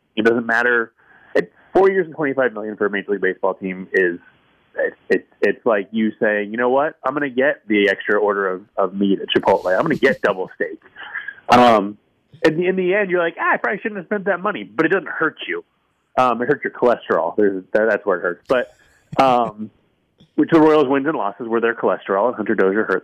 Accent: American